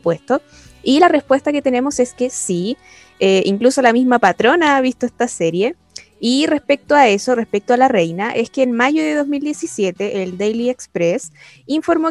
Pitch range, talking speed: 200-265 Hz, 180 wpm